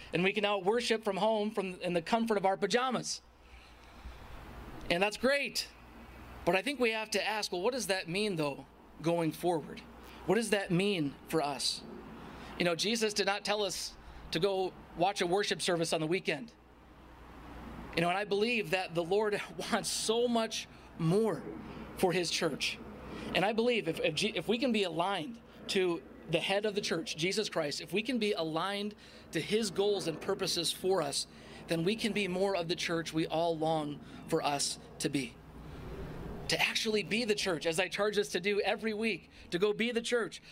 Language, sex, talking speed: English, male, 195 wpm